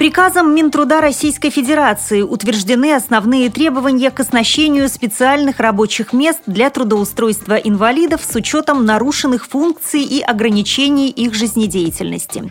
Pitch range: 205-280 Hz